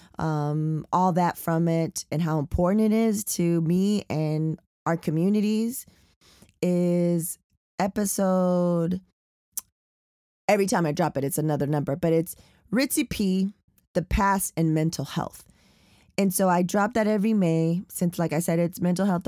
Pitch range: 160-195 Hz